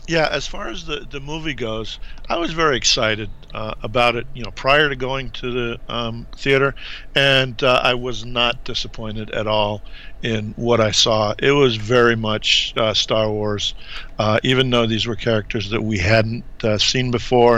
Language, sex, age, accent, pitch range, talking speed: English, male, 50-69, American, 110-125 Hz, 190 wpm